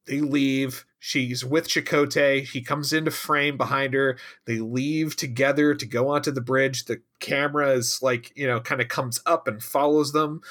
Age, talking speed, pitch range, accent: 40-59, 185 wpm, 115-145 Hz, American